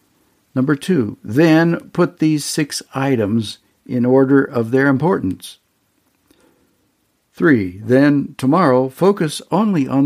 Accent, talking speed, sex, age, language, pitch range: American, 105 wpm, male, 60-79, English, 110-140 Hz